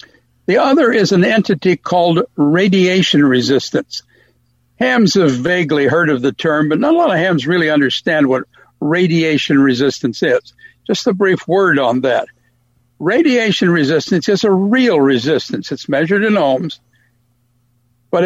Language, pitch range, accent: English, 140-200 Hz, American